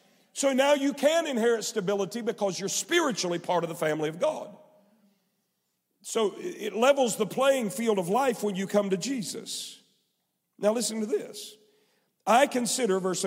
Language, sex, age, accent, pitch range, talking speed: English, male, 50-69, American, 165-220 Hz, 160 wpm